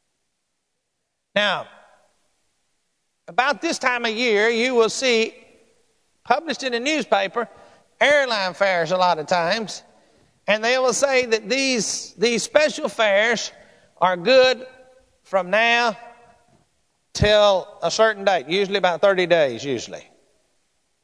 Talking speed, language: 115 wpm, English